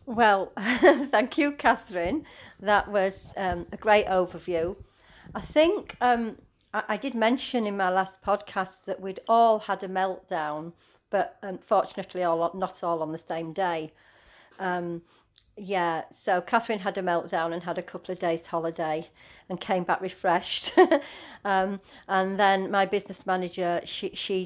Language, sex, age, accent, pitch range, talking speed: English, female, 40-59, British, 175-220 Hz, 150 wpm